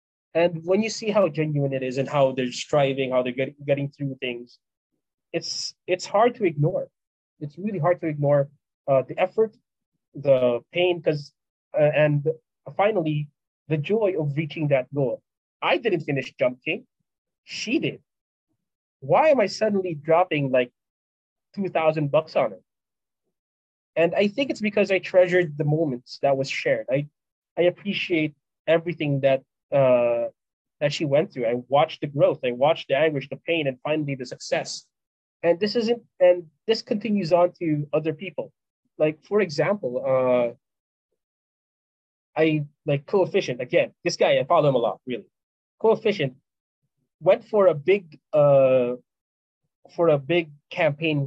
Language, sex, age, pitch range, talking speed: English, male, 20-39, 135-175 Hz, 155 wpm